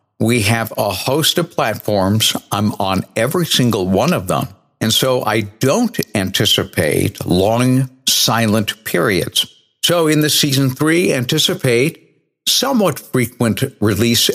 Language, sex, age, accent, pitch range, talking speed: English, male, 60-79, American, 100-130 Hz, 125 wpm